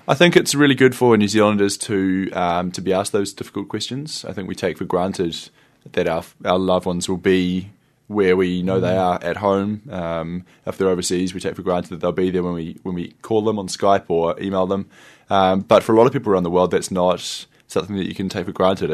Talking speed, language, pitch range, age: 245 wpm, English, 90-100 Hz, 20-39